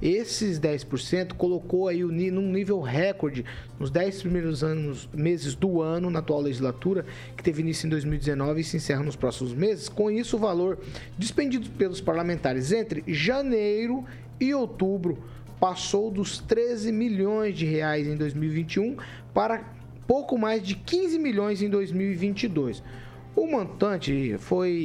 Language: Portuguese